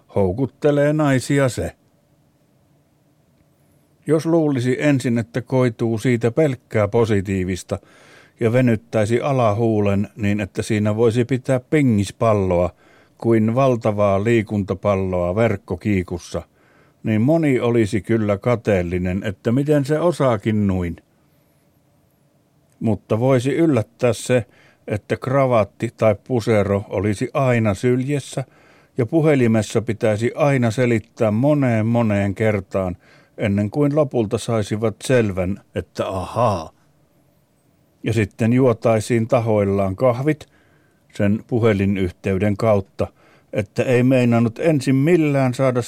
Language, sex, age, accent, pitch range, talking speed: Finnish, male, 60-79, native, 105-135 Hz, 95 wpm